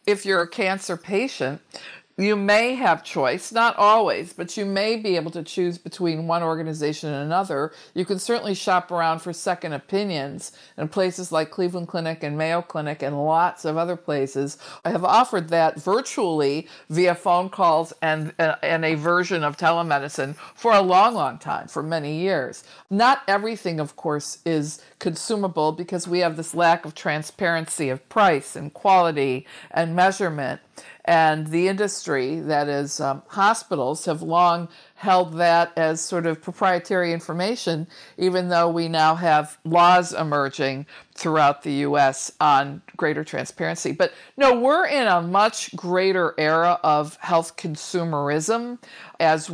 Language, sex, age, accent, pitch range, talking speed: English, female, 50-69, American, 155-185 Hz, 155 wpm